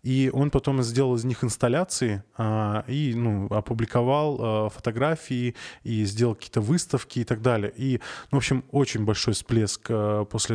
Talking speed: 150 wpm